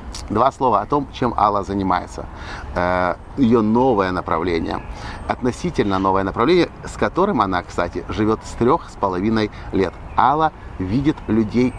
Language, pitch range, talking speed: Russian, 100-135 Hz, 130 wpm